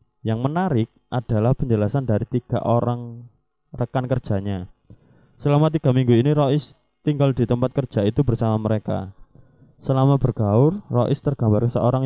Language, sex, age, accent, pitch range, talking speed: Indonesian, male, 20-39, native, 105-135 Hz, 130 wpm